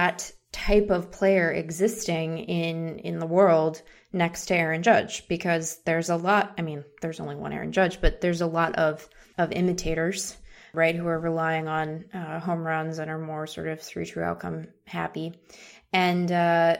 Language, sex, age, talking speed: English, female, 20-39, 180 wpm